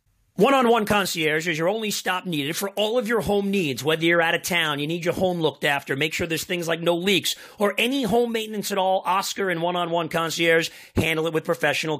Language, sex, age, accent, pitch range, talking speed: English, male, 40-59, American, 165-205 Hz, 225 wpm